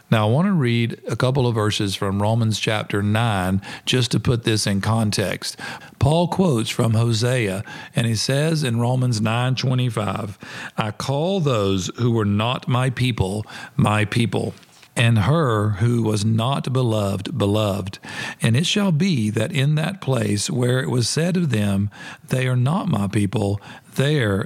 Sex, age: male, 50-69